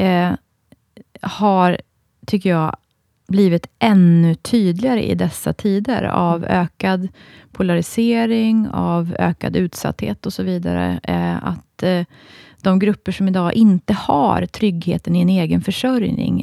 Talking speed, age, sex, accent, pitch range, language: 110 wpm, 30-49, female, native, 160-205 Hz, Swedish